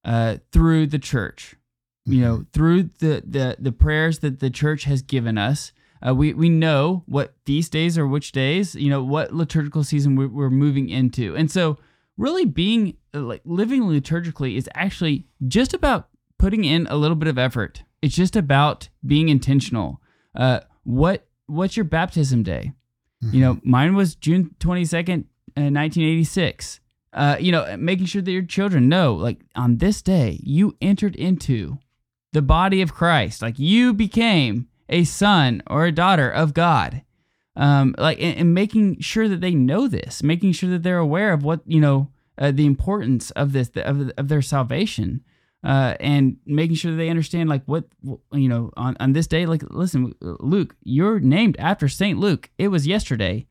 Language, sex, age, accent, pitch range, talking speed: English, male, 20-39, American, 130-170 Hz, 180 wpm